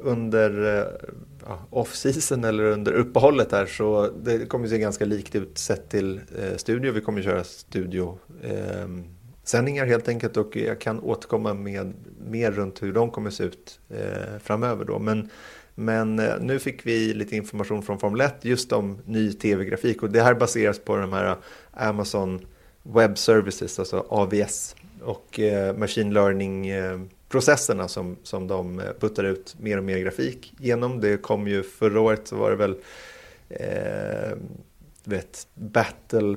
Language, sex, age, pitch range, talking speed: Swedish, male, 30-49, 95-115 Hz, 160 wpm